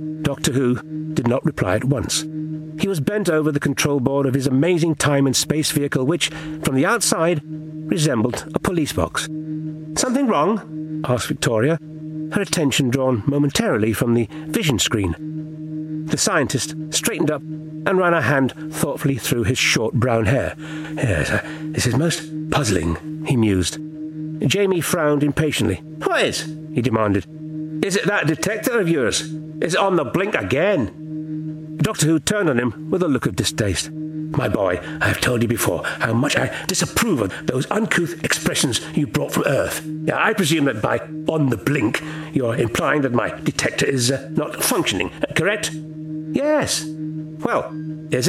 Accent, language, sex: British, English, male